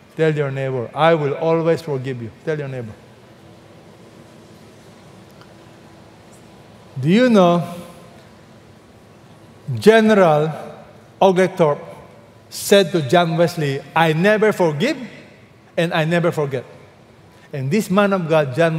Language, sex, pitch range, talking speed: English, male, 125-175 Hz, 105 wpm